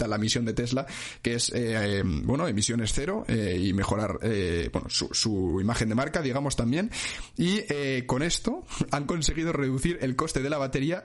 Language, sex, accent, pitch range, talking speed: Spanish, male, Spanish, 120-140 Hz, 180 wpm